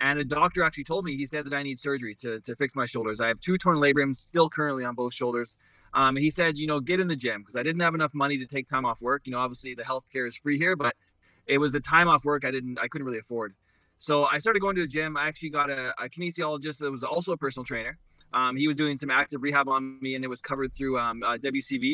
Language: English